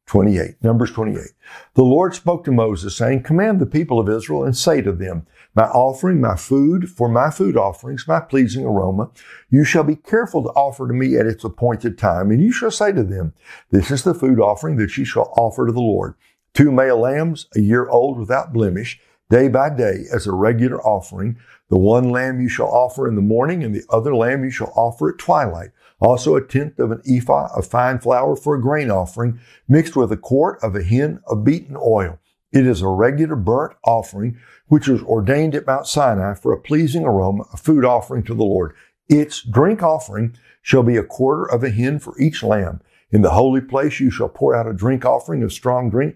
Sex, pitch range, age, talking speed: male, 110-140 Hz, 60-79, 215 wpm